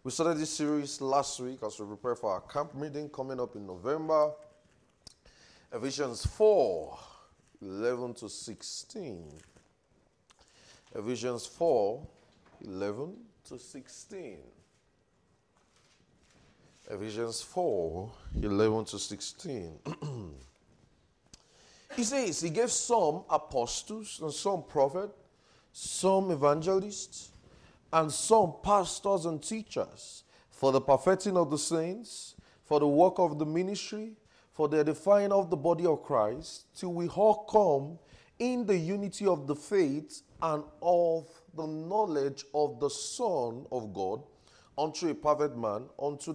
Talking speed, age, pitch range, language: 125 wpm, 30-49, 135-185 Hz, English